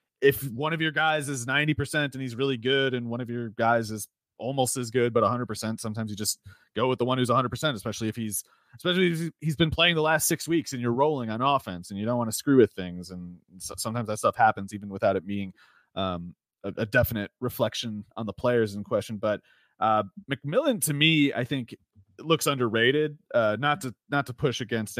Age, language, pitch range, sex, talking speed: 30-49, English, 105-140 Hz, male, 230 wpm